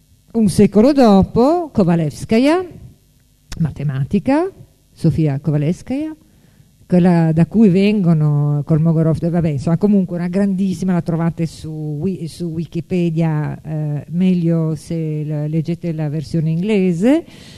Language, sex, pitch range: Italian, female, 155-200 Hz